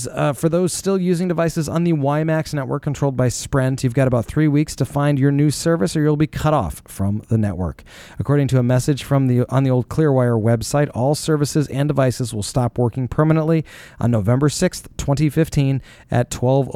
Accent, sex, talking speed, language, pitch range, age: American, male, 195 wpm, English, 110-140 Hz, 30-49